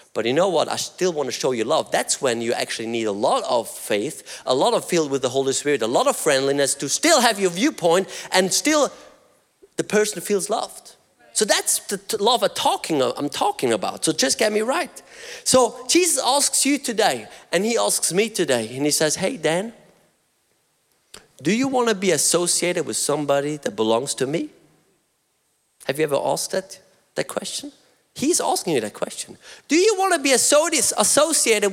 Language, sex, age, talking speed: English, male, 30-49, 190 wpm